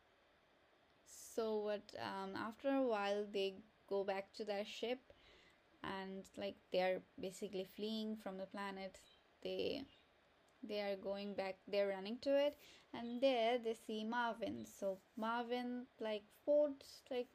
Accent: Indian